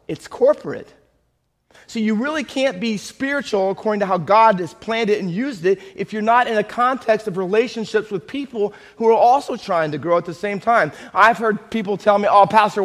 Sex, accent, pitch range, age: male, American, 190-245 Hz, 30-49